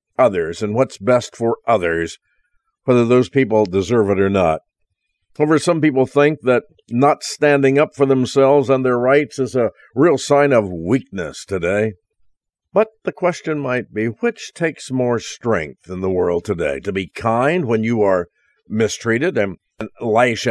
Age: 50-69